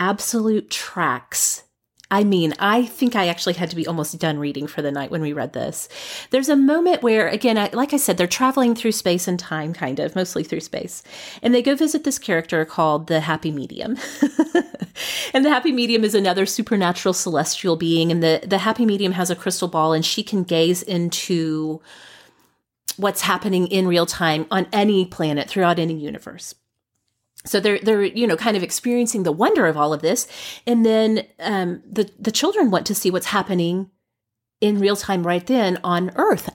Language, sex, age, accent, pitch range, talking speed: English, female, 30-49, American, 165-230 Hz, 190 wpm